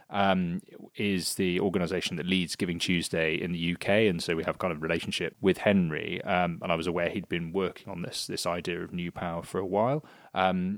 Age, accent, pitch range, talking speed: 30-49, British, 85-100 Hz, 230 wpm